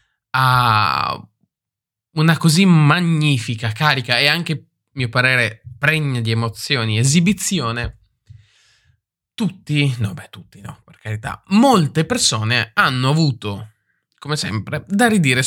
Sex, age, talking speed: male, 20-39, 115 wpm